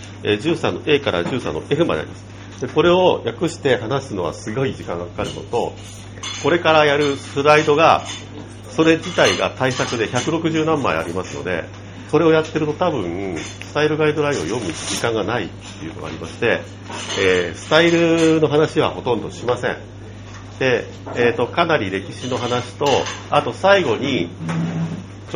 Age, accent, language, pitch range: 50-69, native, Japanese, 100-145 Hz